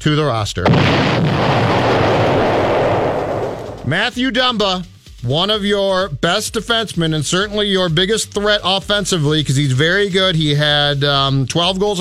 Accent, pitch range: American, 150-195 Hz